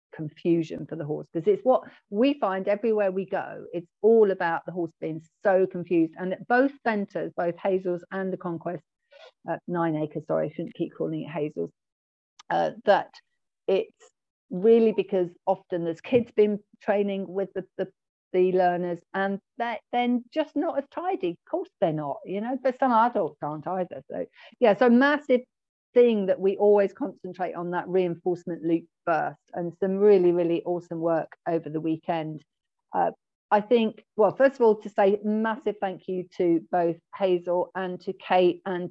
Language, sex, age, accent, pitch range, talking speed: English, female, 50-69, British, 175-215 Hz, 175 wpm